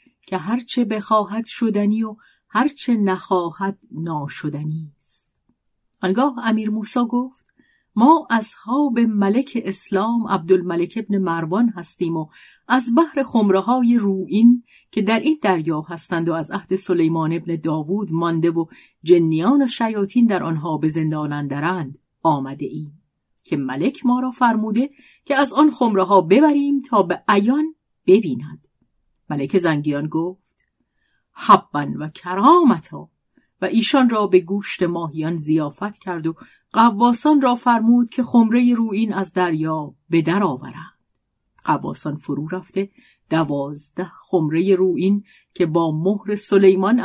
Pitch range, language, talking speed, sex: 165-235 Hz, Persian, 130 wpm, female